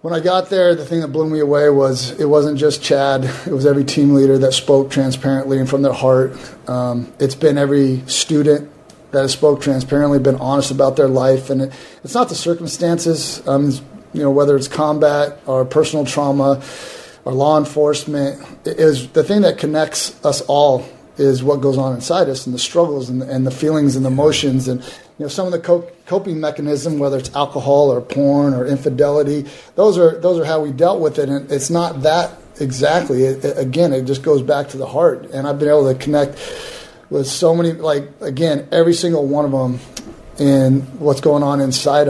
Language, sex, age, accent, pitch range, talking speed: English, male, 30-49, American, 135-155 Hz, 200 wpm